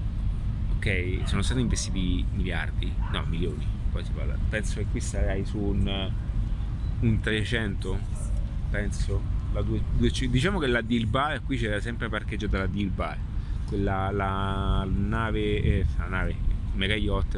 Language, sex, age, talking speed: Italian, male, 30-49, 130 wpm